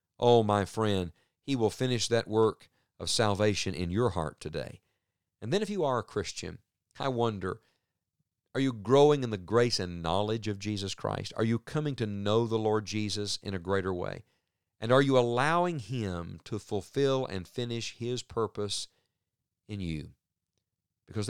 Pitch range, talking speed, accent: 95-120 Hz, 170 wpm, American